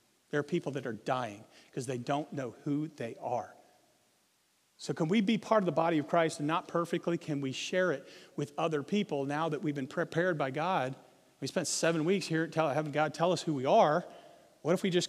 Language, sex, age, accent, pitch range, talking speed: English, male, 40-59, American, 150-195 Hz, 225 wpm